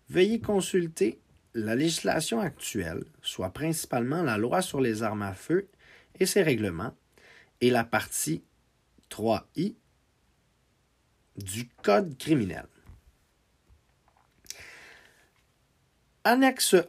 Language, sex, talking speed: English, male, 90 wpm